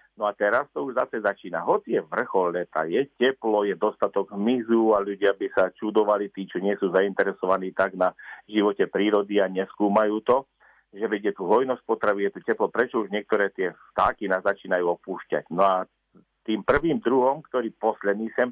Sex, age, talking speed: male, 50-69, 185 wpm